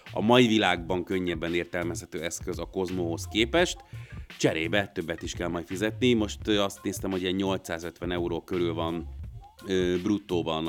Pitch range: 85-110 Hz